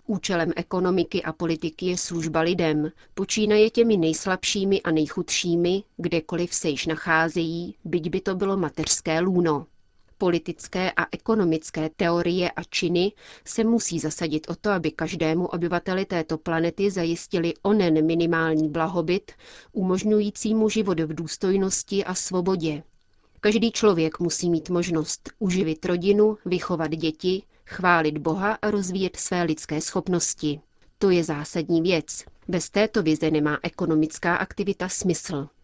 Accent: native